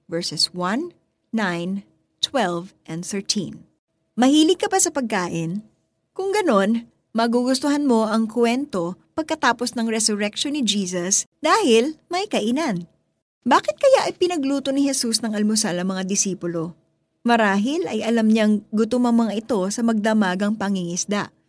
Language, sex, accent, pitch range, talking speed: Filipino, female, native, 195-260 Hz, 130 wpm